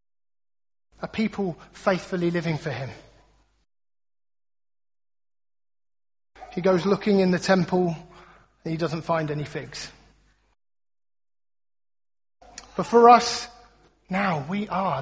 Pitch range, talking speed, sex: 165-215 Hz, 95 wpm, male